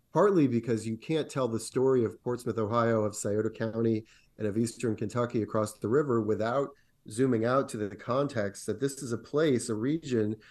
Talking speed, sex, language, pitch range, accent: 190 wpm, male, English, 110-130 Hz, American